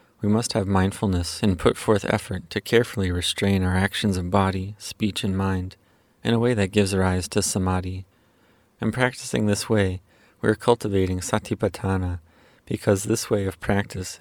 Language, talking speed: English, 165 wpm